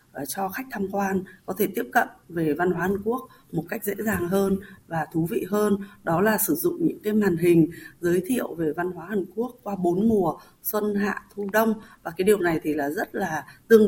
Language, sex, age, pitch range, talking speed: Vietnamese, female, 20-39, 165-210 Hz, 230 wpm